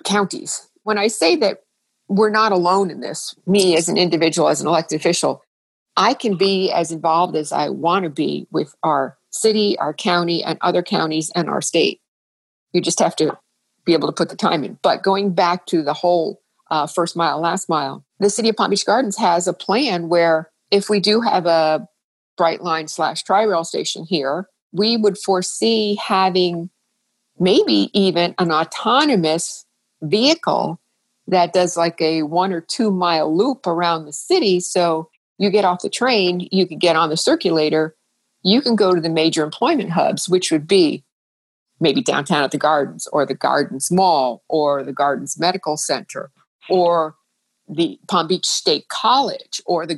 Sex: female